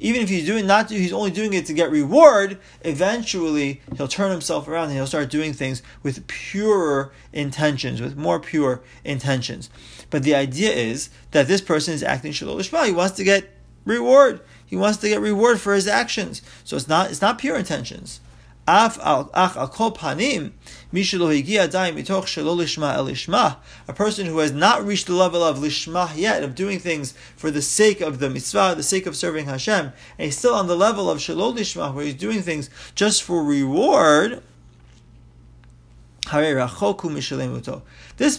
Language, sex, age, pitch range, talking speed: English, male, 30-49, 140-200 Hz, 160 wpm